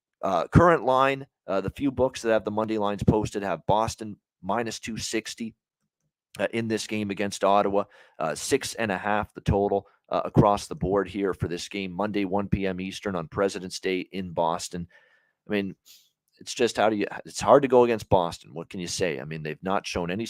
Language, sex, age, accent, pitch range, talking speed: English, male, 40-59, American, 90-110 Hz, 205 wpm